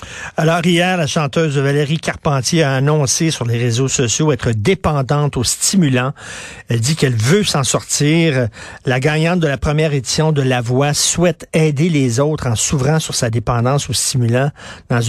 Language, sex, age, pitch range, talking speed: French, male, 50-69, 130-160 Hz, 175 wpm